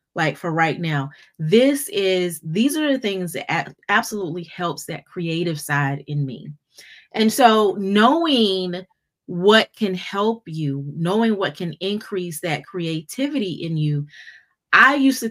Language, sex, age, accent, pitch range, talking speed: English, female, 30-49, American, 155-220 Hz, 140 wpm